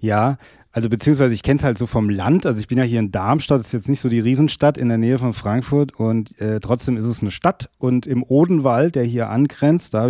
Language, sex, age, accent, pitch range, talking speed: German, male, 30-49, German, 110-140 Hz, 260 wpm